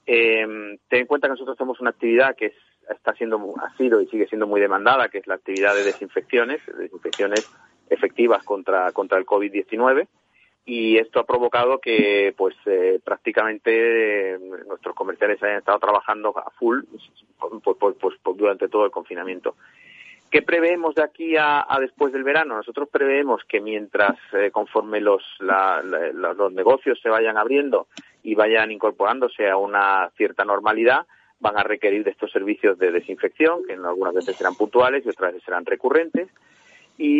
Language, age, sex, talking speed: Spanish, 40-59, male, 165 wpm